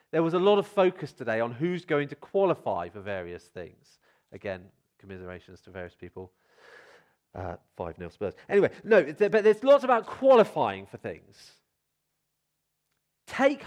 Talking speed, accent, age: 150 wpm, British, 40-59